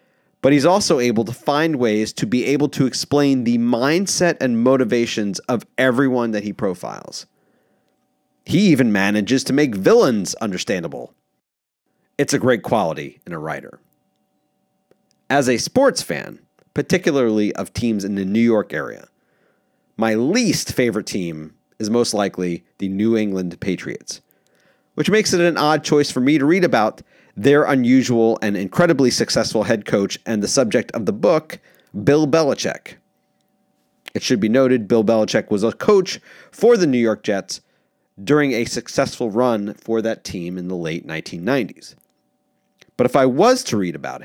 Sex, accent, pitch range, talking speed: male, American, 110-145 Hz, 155 wpm